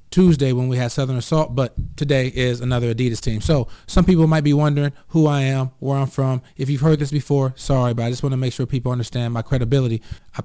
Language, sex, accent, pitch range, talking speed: English, male, American, 115-140 Hz, 240 wpm